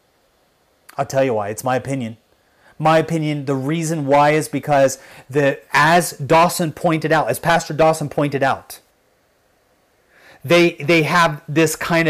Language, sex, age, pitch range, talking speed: English, male, 30-49, 145-180 Hz, 145 wpm